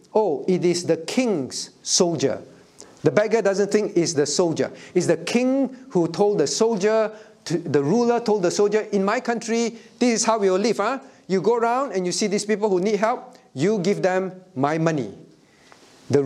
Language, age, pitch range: English, 50-69, 155-215 Hz